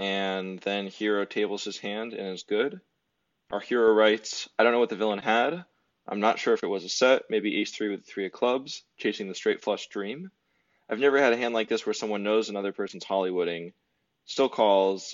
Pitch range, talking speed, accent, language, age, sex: 95-115 Hz, 220 wpm, American, English, 20-39, male